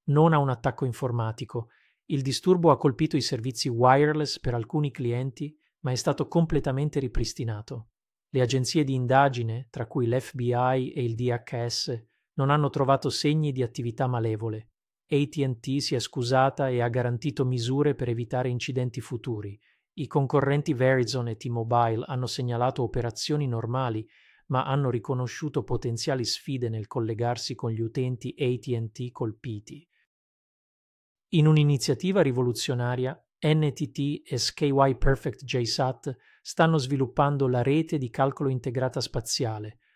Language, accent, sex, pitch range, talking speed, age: Italian, native, male, 120-145 Hz, 130 wpm, 40-59